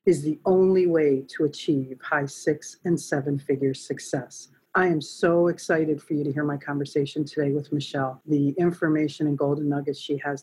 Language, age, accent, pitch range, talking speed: English, 50-69, American, 145-170 Hz, 180 wpm